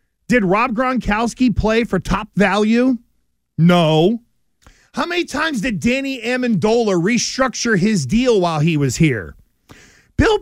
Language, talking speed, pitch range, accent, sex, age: English, 125 wpm, 200-265 Hz, American, male, 40-59